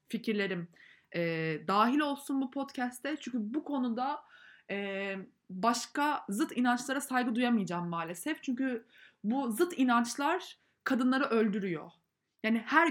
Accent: native